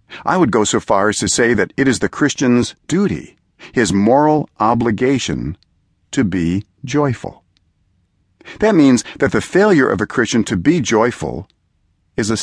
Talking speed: 160 wpm